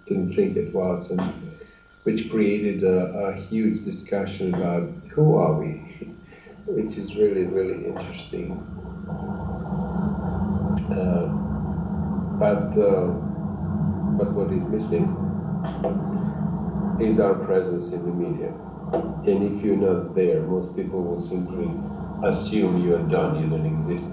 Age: 50-69